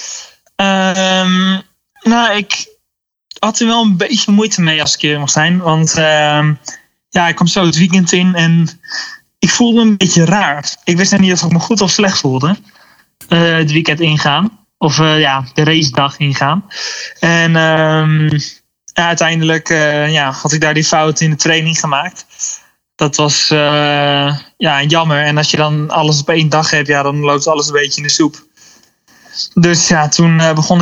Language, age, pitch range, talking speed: Dutch, 20-39, 150-185 Hz, 185 wpm